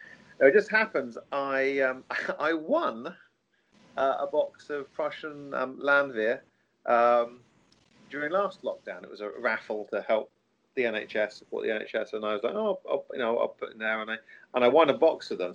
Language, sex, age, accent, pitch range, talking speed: English, male, 40-59, British, 110-145 Hz, 195 wpm